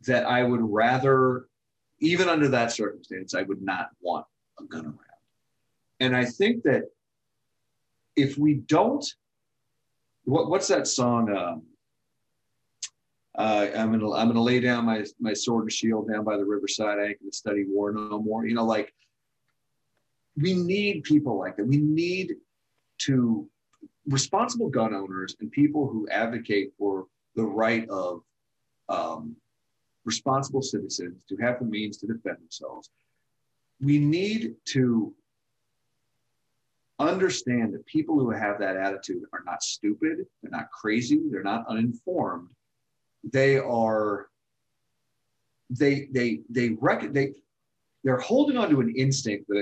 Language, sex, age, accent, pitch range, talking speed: English, male, 40-59, American, 110-140 Hz, 140 wpm